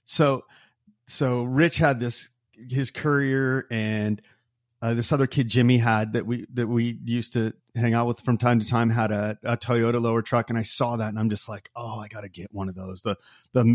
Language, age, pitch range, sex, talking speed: English, 30-49, 115-135 Hz, male, 225 wpm